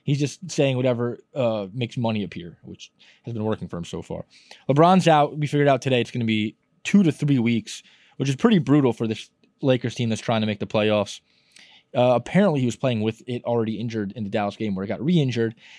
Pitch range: 125-170 Hz